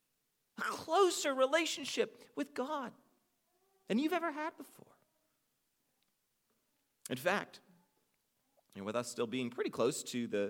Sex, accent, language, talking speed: male, American, English, 115 wpm